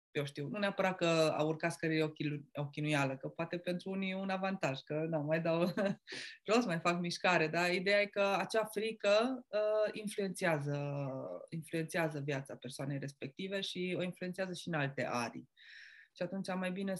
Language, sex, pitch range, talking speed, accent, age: Romanian, female, 155-205 Hz, 175 wpm, native, 20-39